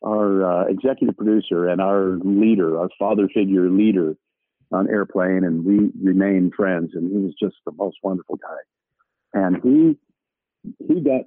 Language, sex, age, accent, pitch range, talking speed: English, male, 50-69, American, 90-105 Hz, 155 wpm